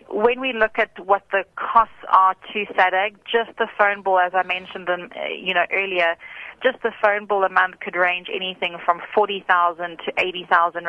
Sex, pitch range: female, 180-215 Hz